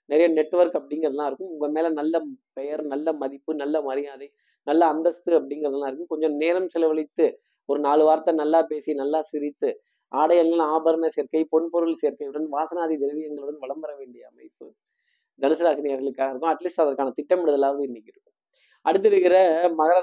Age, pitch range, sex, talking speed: 20-39, 140-170 Hz, male, 145 wpm